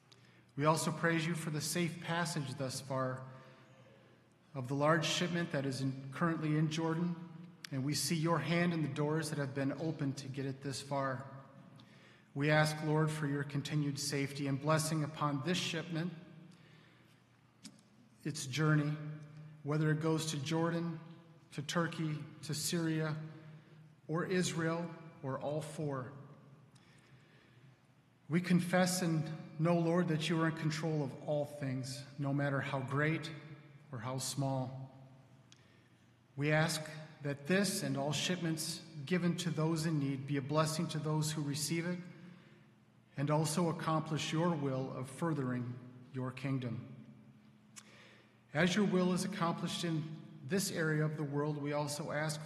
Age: 40-59